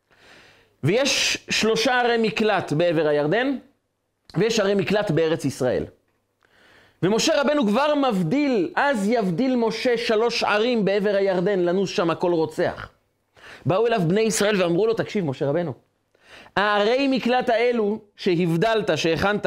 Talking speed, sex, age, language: 125 wpm, male, 30-49, Hebrew